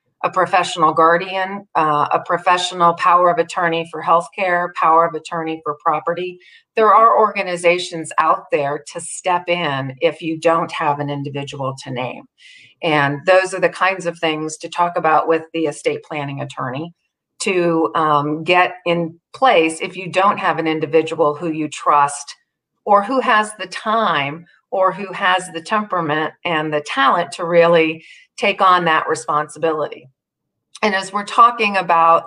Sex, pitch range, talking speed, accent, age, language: female, 155-190 Hz, 160 wpm, American, 40-59, English